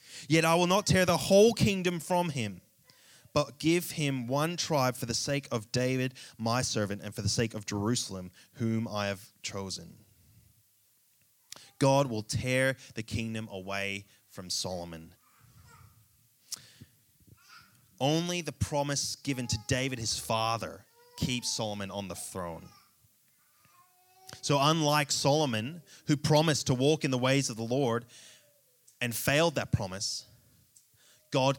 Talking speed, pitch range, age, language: 135 wpm, 110-140 Hz, 20-39, English